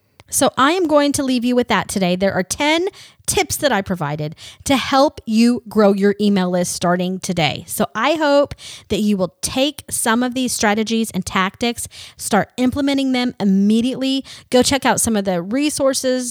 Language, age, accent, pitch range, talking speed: English, 30-49, American, 185-245 Hz, 185 wpm